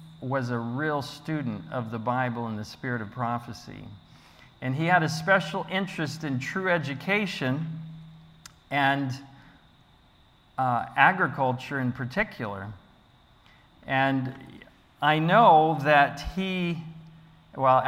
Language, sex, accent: English, male, American